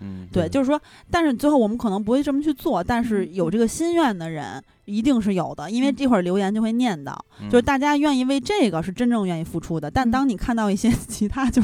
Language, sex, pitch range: Chinese, female, 185-250 Hz